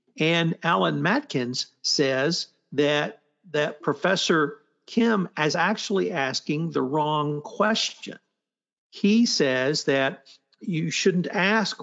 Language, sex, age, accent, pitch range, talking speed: English, male, 60-79, American, 140-180 Hz, 100 wpm